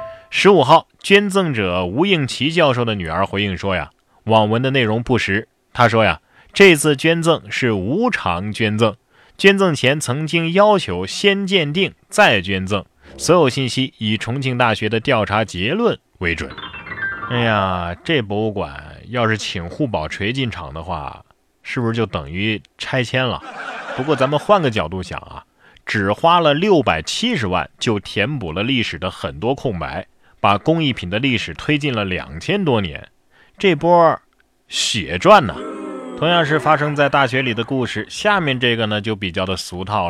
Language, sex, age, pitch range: Chinese, male, 20-39, 105-150 Hz